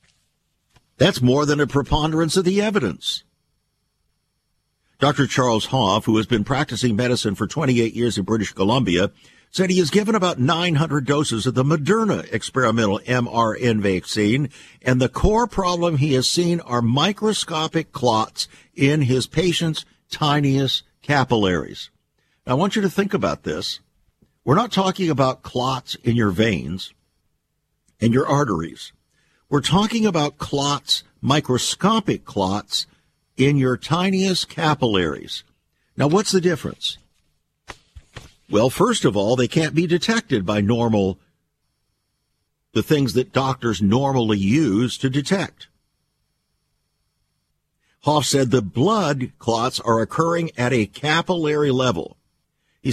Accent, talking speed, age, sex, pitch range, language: American, 130 wpm, 60-79, male, 115-165 Hz, English